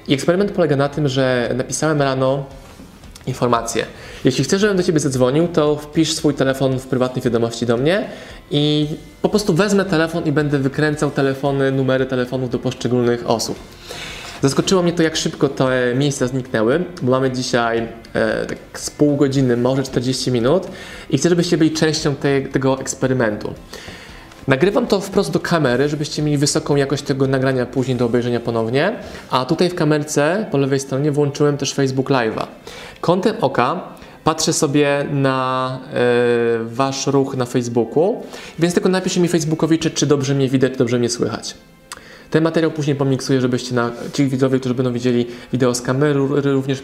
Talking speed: 165 wpm